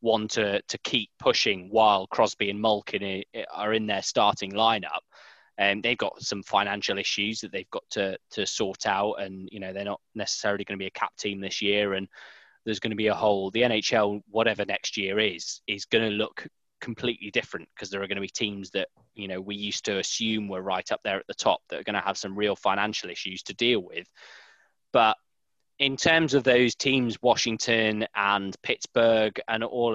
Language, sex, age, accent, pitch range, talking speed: English, male, 20-39, British, 100-115 Hz, 210 wpm